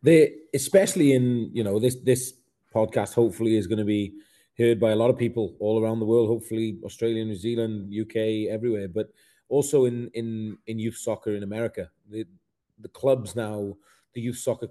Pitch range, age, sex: 105-125 Hz, 30-49, male